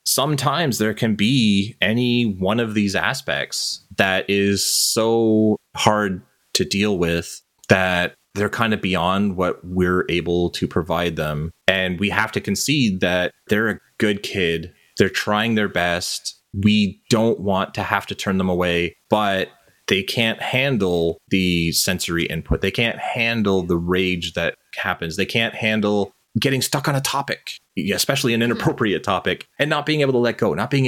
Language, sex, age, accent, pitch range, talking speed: English, male, 30-49, American, 90-115 Hz, 165 wpm